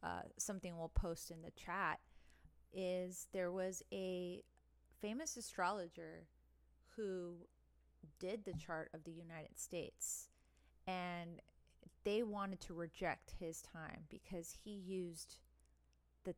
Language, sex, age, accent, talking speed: English, female, 30-49, American, 115 wpm